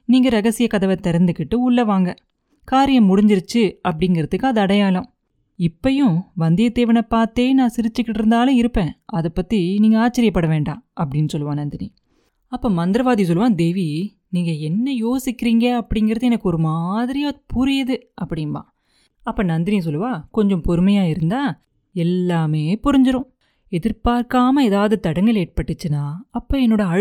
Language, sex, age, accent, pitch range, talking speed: Tamil, female, 30-49, native, 165-230 Hz, 120 wpm